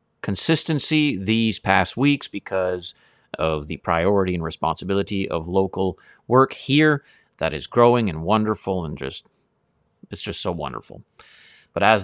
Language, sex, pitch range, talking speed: English, male, 90-125 Hz, 135 wpm